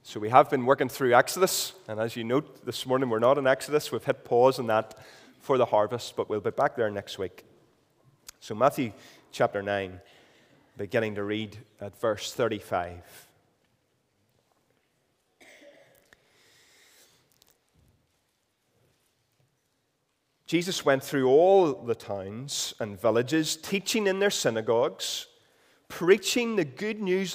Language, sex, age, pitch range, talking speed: English, male, 30-49, 120-190 Hz, 125 wpm